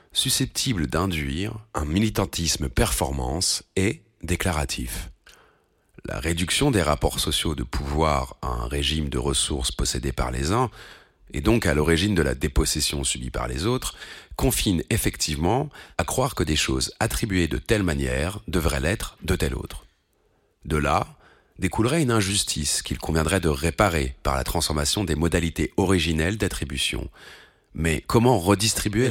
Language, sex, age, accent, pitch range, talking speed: French, male, 40-59, French, 70-100 Hz, 140 wpm